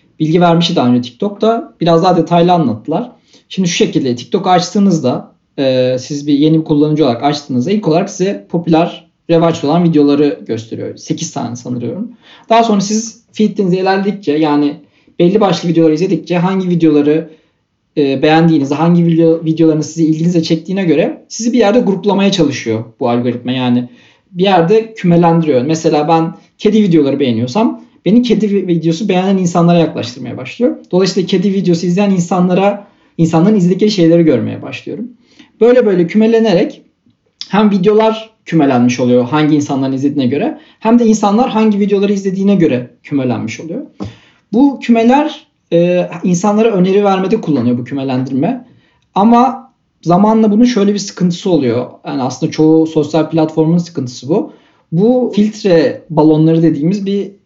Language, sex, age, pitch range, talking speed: Turkish, male, 40-59, 155-205 Hz, 140 wpm